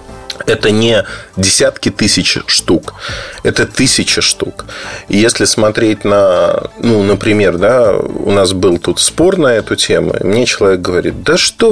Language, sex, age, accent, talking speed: Russian, male, 30-49, native, 145 wpm